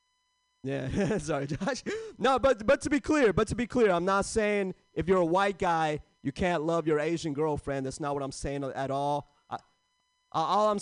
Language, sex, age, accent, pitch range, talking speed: English, male, 30-49, American, 135-205 Hz, 205 wpm